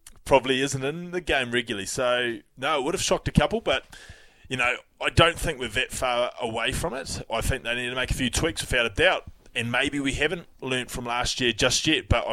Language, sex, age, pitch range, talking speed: English, male, 20-39, 110-135 Hz, 245 wpm